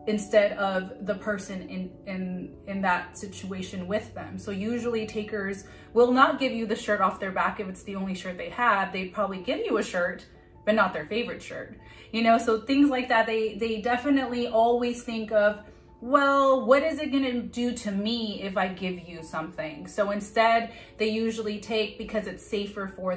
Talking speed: 195 wpm